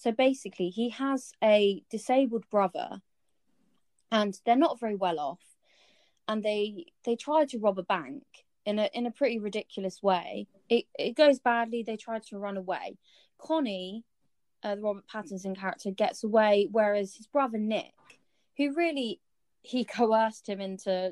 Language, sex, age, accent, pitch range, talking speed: English, female, 20-39, British, 195-255 Hz, 155 wpm